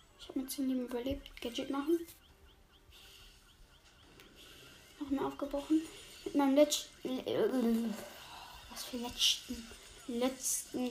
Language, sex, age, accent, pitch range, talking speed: German, female, 10-29, German, 245-280 Hz, 90 wpm